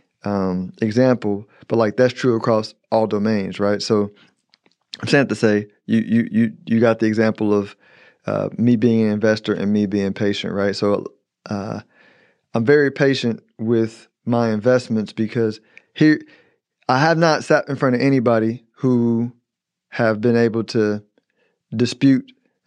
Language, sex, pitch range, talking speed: English, male, 110-130 Hz, 150 wpm